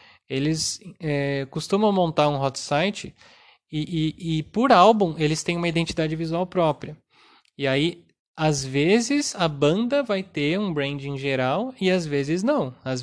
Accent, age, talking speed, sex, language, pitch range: Brazilian, 20-39, 160 wpm, male, Portuguese, 145-185 Hz